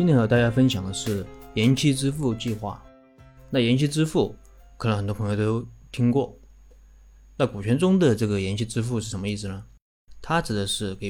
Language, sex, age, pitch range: Chinese, male, 20-39, 100-125 Hz